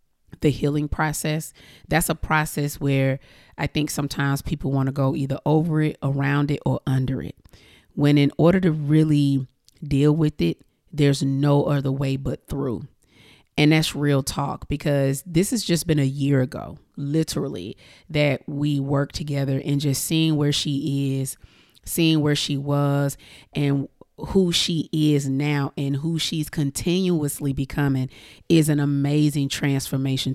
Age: 30-49